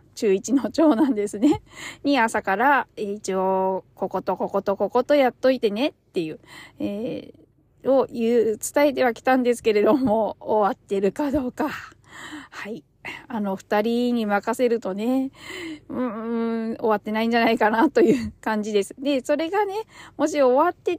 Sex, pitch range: female, 205-265 Hz